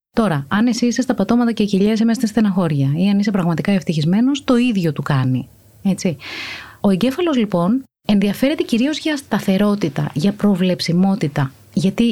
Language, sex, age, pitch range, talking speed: Greek, female, 30-49, 170-255 Hz, 160 wpm